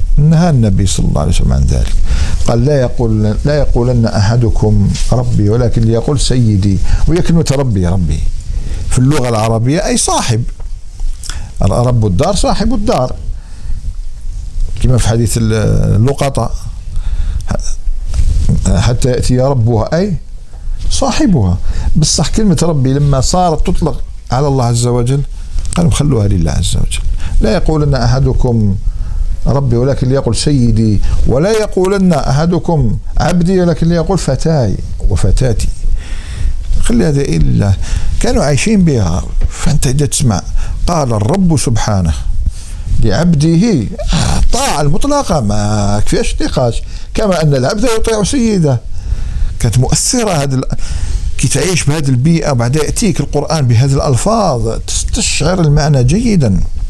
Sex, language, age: male, Arabic, 50-69